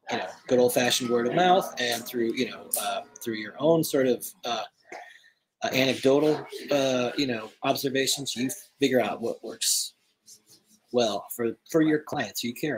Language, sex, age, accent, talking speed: English, male, 30-49, American, 180 wpm